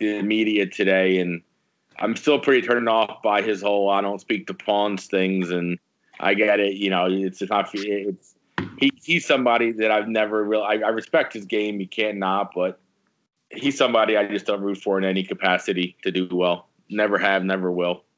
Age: 20-39